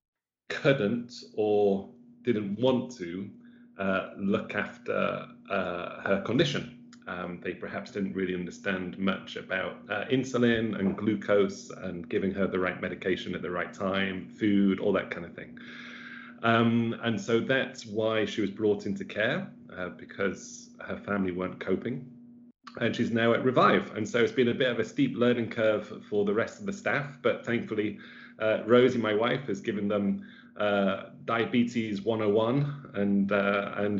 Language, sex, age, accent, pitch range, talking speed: English, male, 30-49, British, 100-125 Hz, 160 wpm